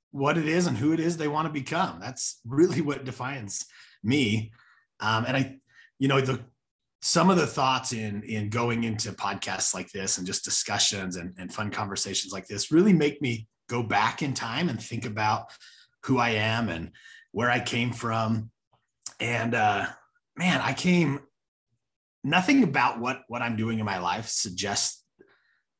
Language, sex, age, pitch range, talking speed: English, male, 30-49, 105-145 Hz, 175 wpm